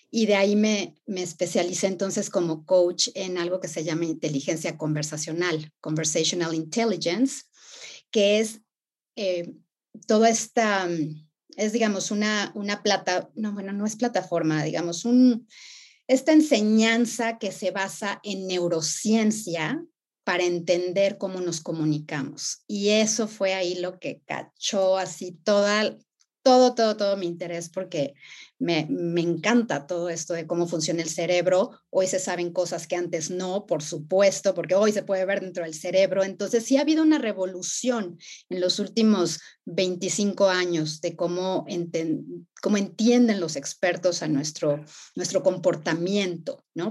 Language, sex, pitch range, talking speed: Spanish, female, 170-210 Hz, 145 wpm